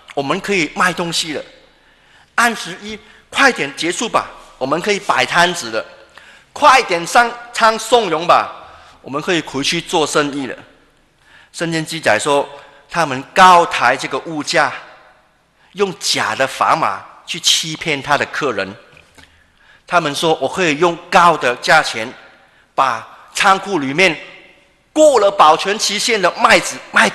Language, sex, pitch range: Chinese, male, 140-195 Hz